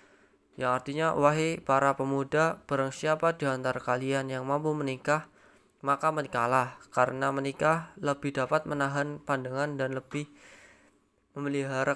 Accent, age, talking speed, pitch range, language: native, 20-39, 115 wpm, 130-150 Hz, Indonesian